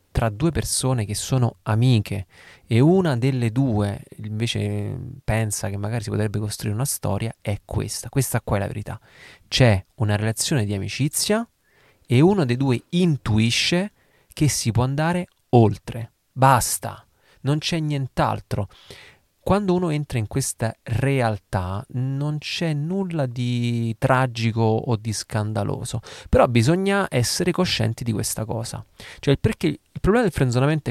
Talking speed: 140 wpm